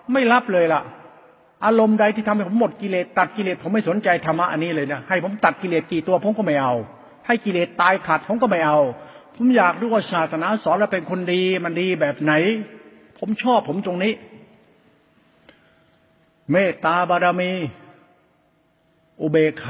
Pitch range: 160-205 Hz